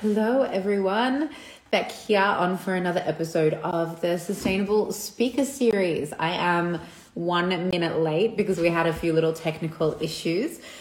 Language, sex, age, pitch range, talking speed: English, female, 20-39, 160-195 Hz, 145 wpm